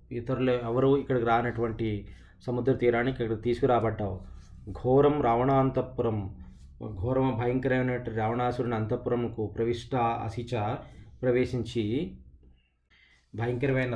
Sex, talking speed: male, 75 wpm